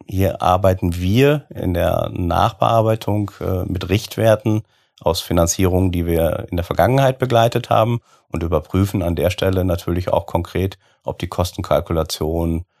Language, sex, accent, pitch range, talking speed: German, male, German, 80-95 Hz, 135 wpm